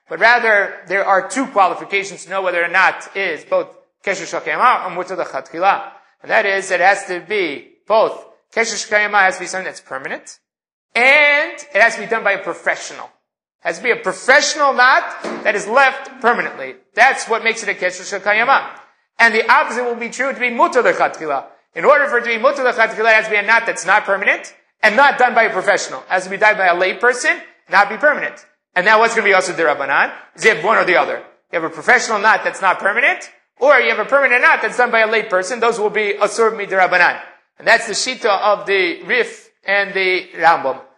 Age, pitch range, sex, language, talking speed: 30-49, 190-255 Hz, male, English, 225 wpm